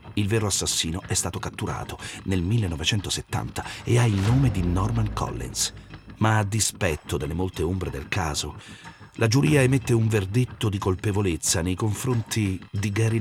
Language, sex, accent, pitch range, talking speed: Italian, male, native, 95-115 Hz, 155 wpm